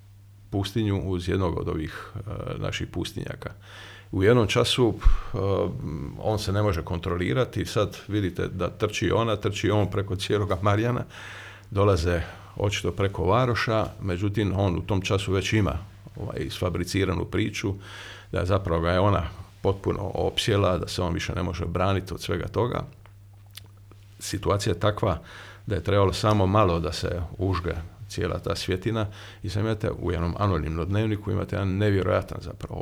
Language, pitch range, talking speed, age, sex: Croatian, 95-110 Hz, 150 wpm, 50-69, male